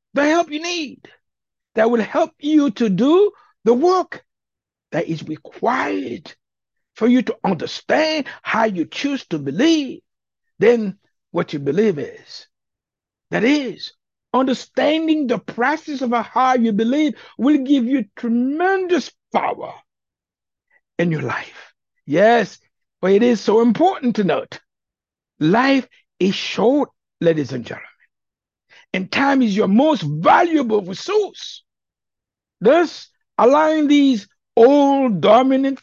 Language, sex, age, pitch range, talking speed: English, male, 60-79, 210-300 Hz, 120 wpm